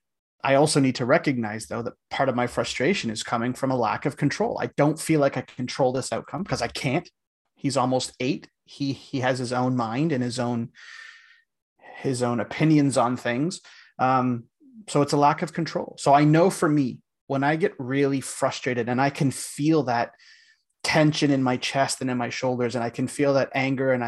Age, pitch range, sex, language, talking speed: 30-49, 125-150 Hz, male, English, 205 wpm